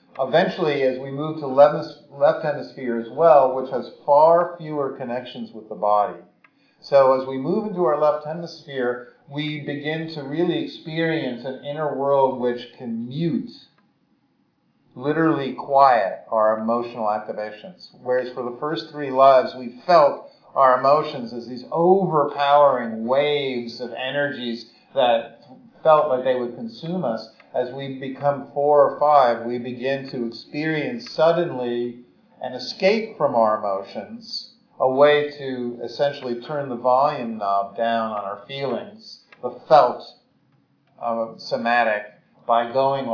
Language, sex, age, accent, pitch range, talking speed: English, male, 50-69, American, 120-150 Hz, 135 wpm